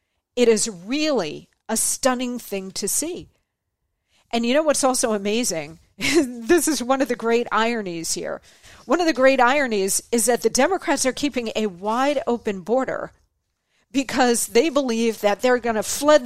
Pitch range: 190-255 Hz